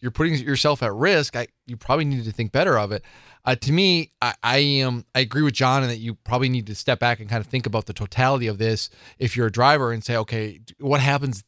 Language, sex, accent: English, male, American